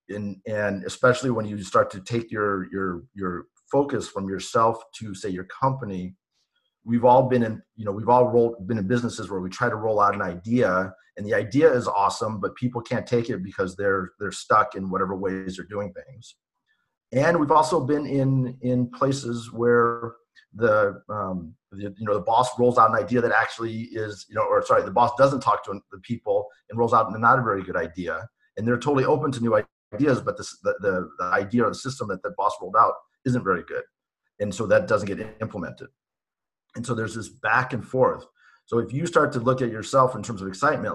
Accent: American